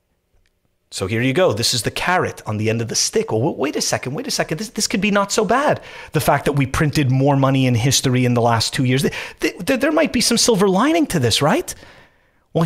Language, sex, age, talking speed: English, male, 30-49, 240 wpm